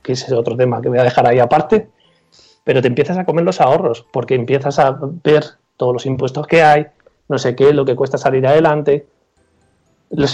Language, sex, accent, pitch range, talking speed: Spanish, male, Spanish, 140-165 Hz, 210 wpm